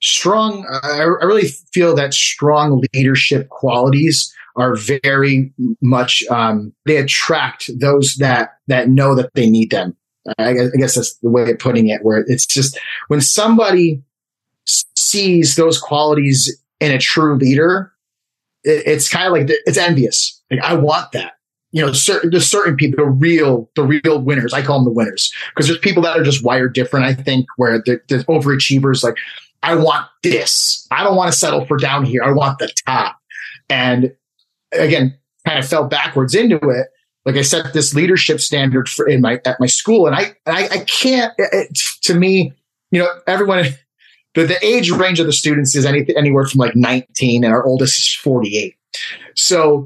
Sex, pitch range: male, 130-160 Hz